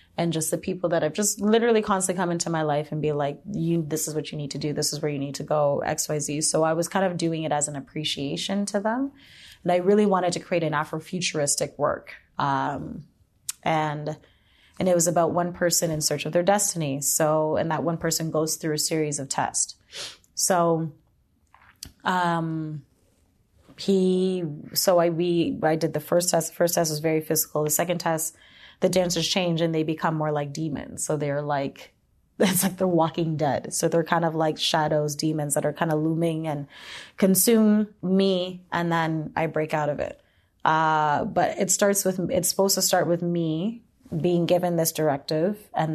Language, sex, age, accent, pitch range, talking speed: English, female, 30-49, American, 150-175 Hz, 200 wpm